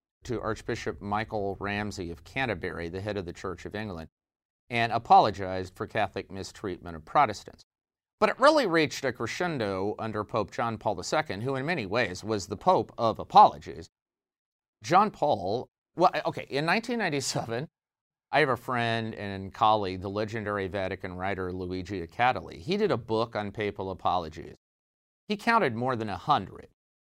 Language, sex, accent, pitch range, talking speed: English, male, American, 95-125 Hz, 155 wpm